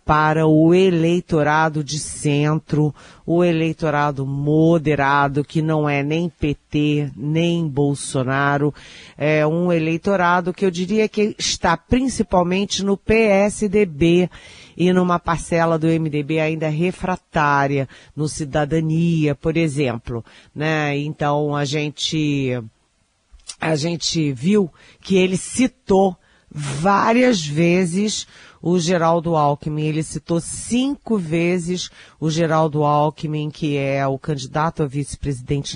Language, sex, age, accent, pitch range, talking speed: Portuguese, female, 40-59, Brazilian, 145-170 Hz, 105 wpm